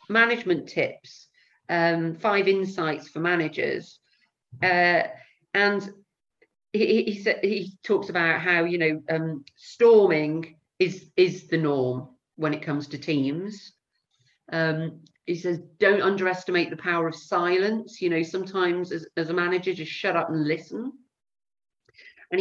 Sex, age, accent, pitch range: female, 50-69, British, 165-205 Hz